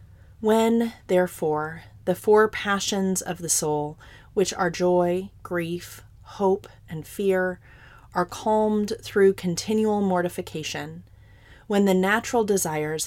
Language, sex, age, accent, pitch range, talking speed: English, female, 30-49, American, 150-190 Hz, 110 wpm